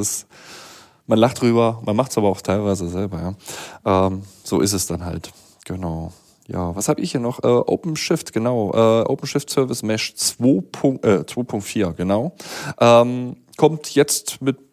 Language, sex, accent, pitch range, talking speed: German, male, German, 100-125 Hz, 160 wpm